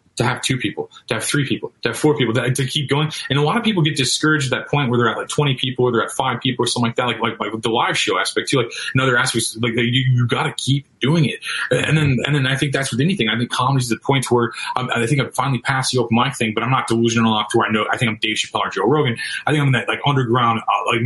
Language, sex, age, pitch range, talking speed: English, male, 30-49, 115-140 Hz, 320 wpm